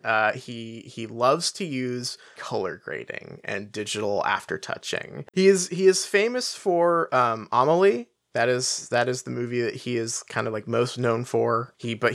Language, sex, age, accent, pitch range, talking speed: English, male, 20-39, American, 115-165 Hz, 180 wpm